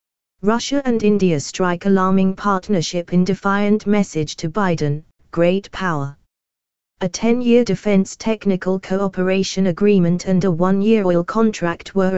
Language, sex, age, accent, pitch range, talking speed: English, female, 20-39, British, 175-210 Hz, 125 wpm